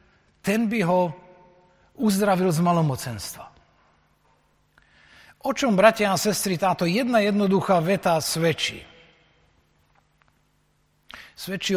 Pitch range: 170-205 Hz